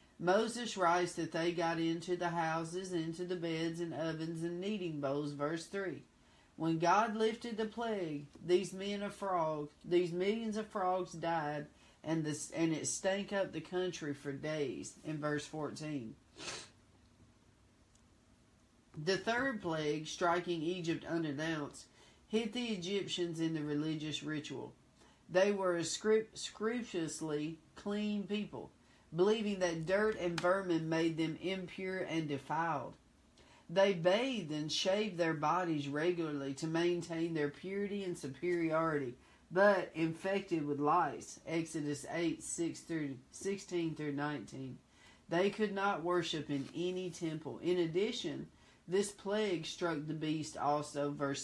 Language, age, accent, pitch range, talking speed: English, 50-69, American, 150-190 Hz, 130 wpm